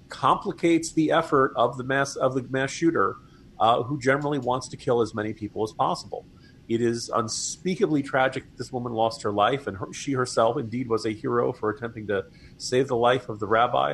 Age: 40-59